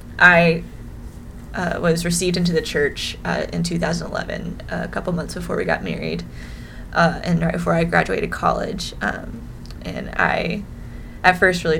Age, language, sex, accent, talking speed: 20-39, English, female, American, 165 wpm